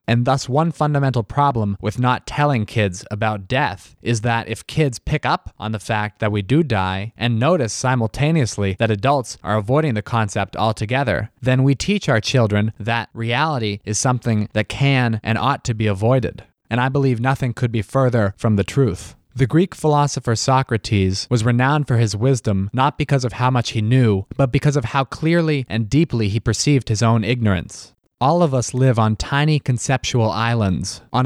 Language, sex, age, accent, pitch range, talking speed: English, male, 20-39, American, 110-135 Hz, 185 wpm